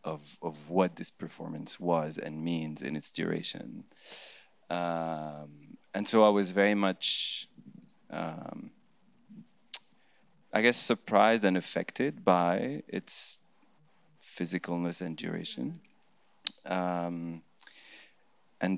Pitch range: 85-110 Hz